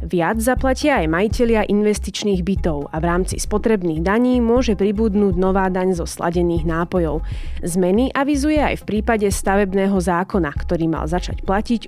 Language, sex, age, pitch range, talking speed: Slovak, female, 20-39, 170-220 Hz, 145 wpm